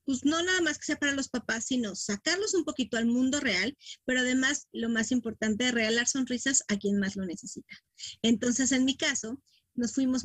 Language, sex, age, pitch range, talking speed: Spanish, female, 30-49, 215-260 Hz, 205 wpm